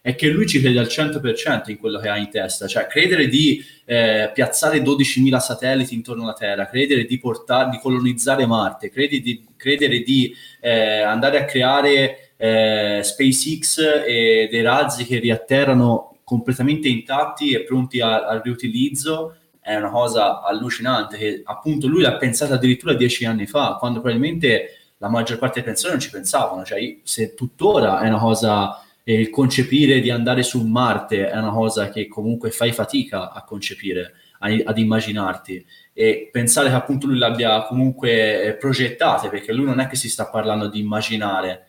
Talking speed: 165 wpm